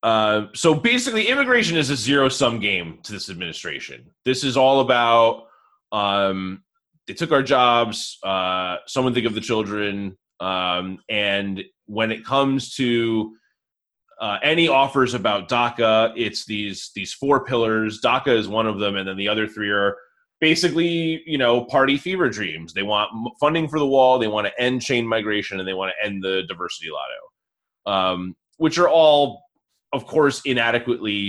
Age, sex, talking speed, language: 20-39, male, 165 wpm, English